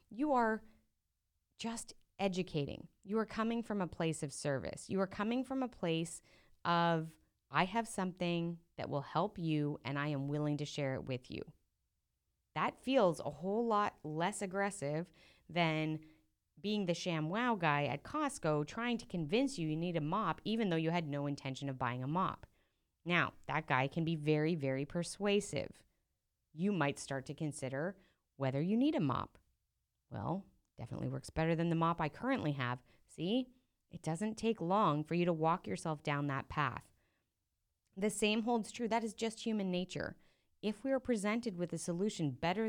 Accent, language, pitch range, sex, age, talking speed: American, English, 145-210 Hz, female, 30-49, 175 wpm